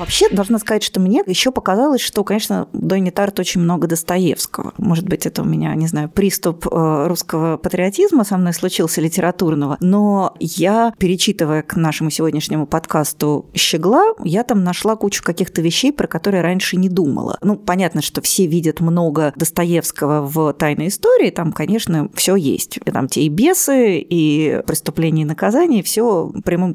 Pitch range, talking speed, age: 165-210 Hz, 165 wpm, 30-49